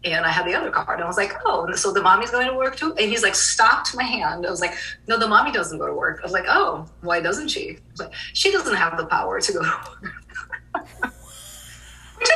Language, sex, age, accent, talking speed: English, female, 30-49, American, 245 wpm